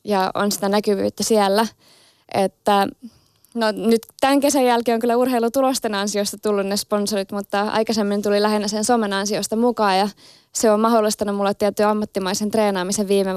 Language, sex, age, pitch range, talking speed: Finnish, female, 20-39, 195-225 Hz, 155 wpm